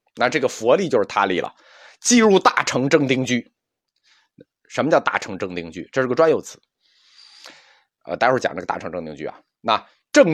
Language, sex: Chinese, male